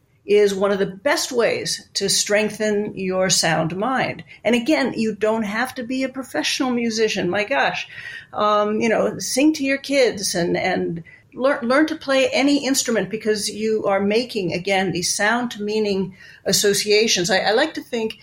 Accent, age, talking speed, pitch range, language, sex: American, 50-69, 170 wpm, 185-225 Hz, English, female